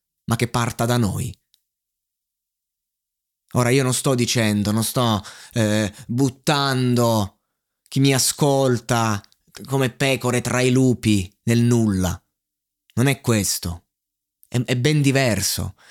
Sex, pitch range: male, 105-135 Hz